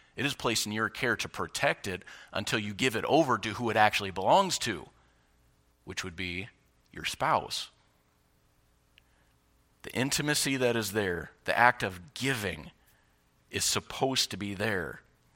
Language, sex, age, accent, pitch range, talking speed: English, male, 40-59, American, 90-125 Hz, 150 wpm